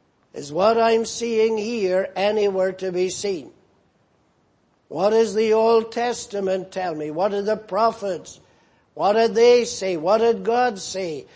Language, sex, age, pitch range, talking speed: English, male, 60-79, 165-200 Hz, 150 wpm